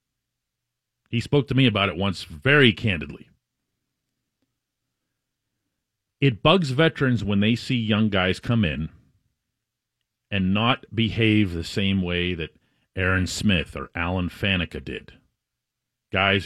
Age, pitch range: 40-59, 90-135 Hz